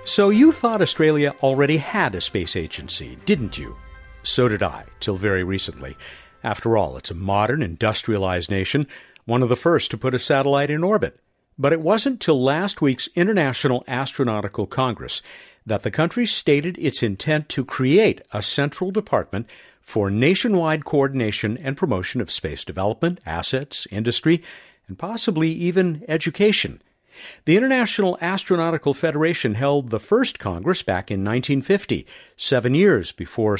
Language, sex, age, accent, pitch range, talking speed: English, male, 50-69, American, 105-160 Hz, 145 wpm